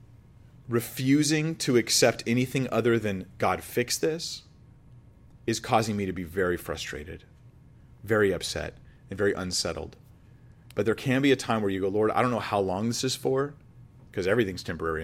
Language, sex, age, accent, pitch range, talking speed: English, male, 30-49, American, 100-125 Hz, 170 wpm